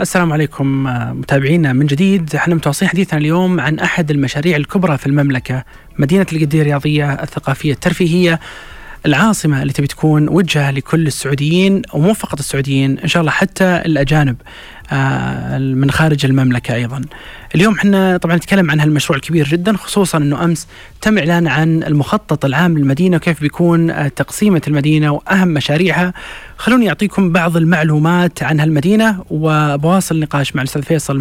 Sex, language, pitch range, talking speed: male, Arabic, 145-175 Hz, 140 wpm